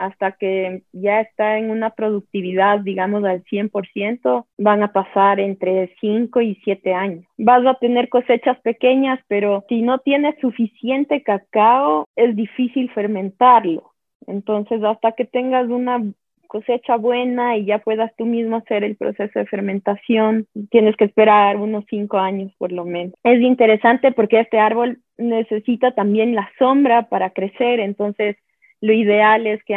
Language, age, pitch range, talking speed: Spanish, 20-39, 200-235 Hz, 150 wpm